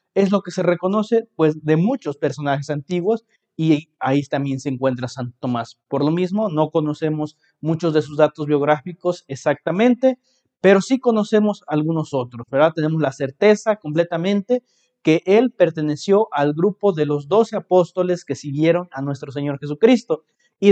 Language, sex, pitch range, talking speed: Spanish, male, 150-205 Hz, 155 wpm